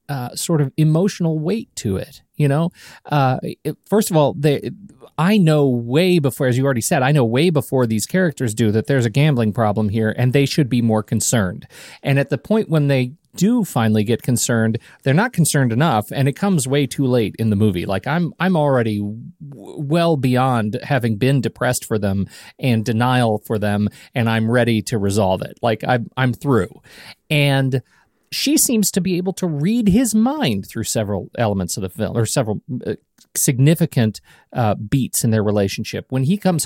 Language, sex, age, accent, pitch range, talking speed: English, male, 40-59, American, 115-165 Hz, 195 wpm